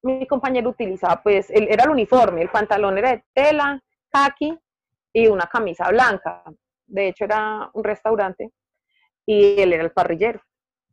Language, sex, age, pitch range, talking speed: Spanish, female, 30-49, 180-245 Hz, 150 wpm